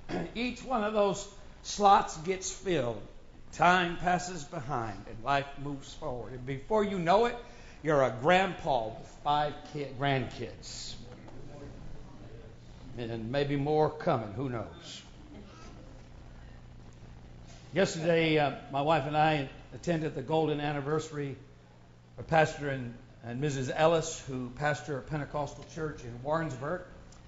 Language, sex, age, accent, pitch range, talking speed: English, male, 60-79, American, 125-155 Hz, 120 wpm